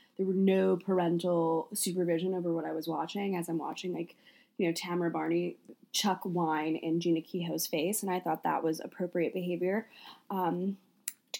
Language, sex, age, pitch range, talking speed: English, female, 10-29, 180-240 Hz, 175 wpm